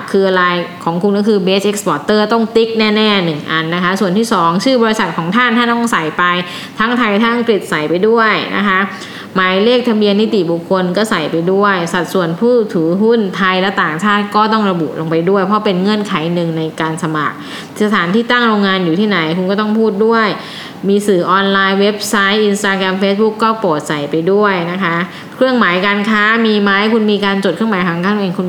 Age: 20-39